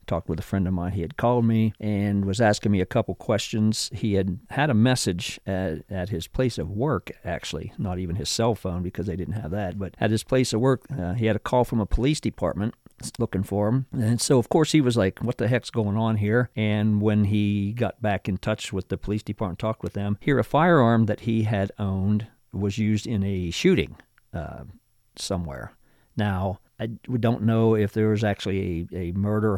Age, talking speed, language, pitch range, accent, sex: 50-69, 220 wpm, English, 100-115 Hz, American, male